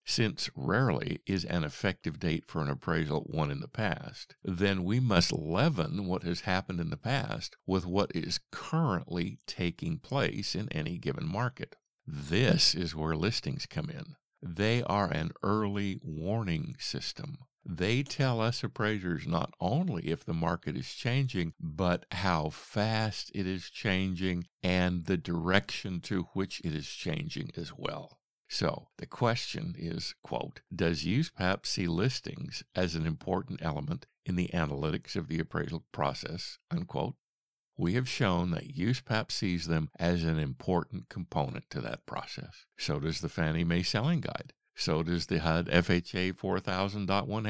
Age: 50-69